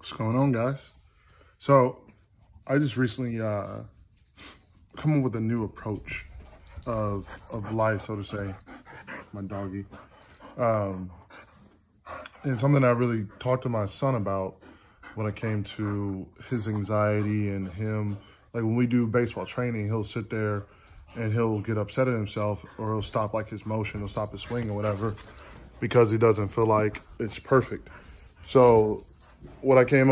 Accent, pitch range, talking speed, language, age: American, 105-120 Hz, 155 wpm, English, 10-29